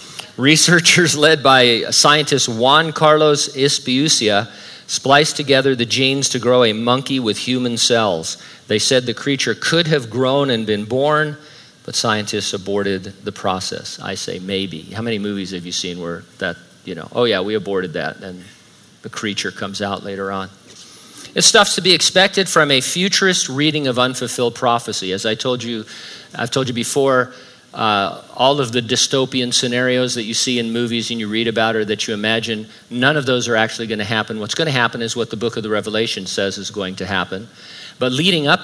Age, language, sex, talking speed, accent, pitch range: 40-59, English, male, 190 wpm, American, 110-140 Hz